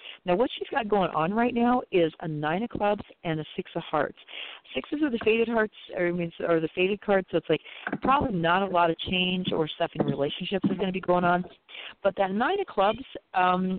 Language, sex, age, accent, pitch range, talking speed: English, female, 40-59, American, 150-185 Hz, 240 wpm